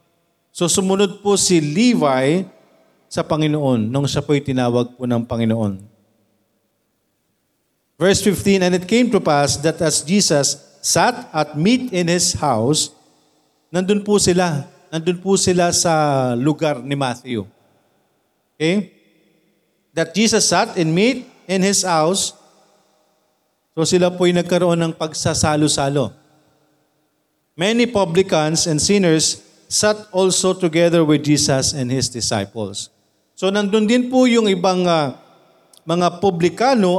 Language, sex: Filipino, male